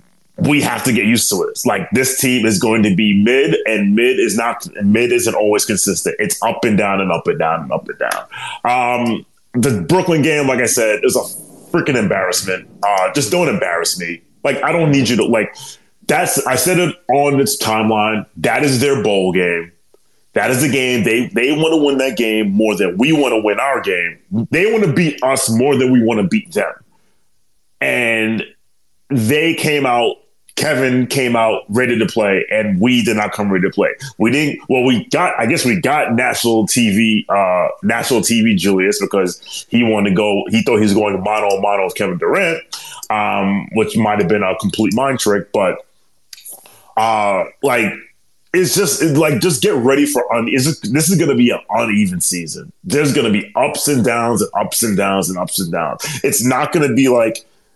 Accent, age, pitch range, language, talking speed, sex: American, 30-49, 110-160 Hz, English, 210 wpm, male